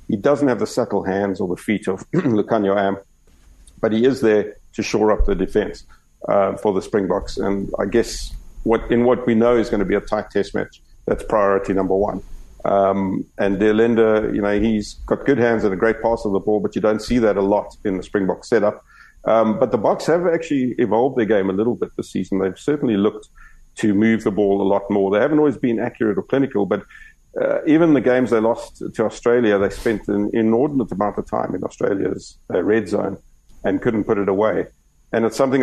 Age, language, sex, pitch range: 50-69, English, male, 100-115 Hz